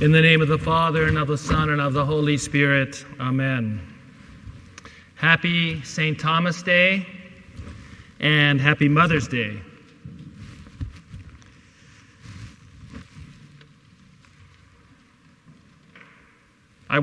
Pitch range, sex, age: 145-165 Hz, male, 40-59